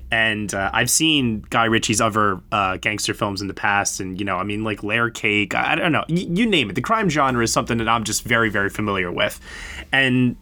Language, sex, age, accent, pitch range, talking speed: English, male, 20-39, American, 110-145 Hz, 230 wpm